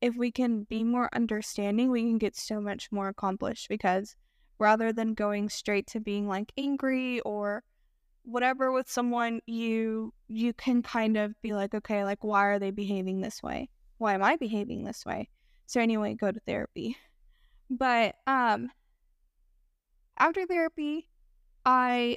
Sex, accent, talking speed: female, American, 155 wpm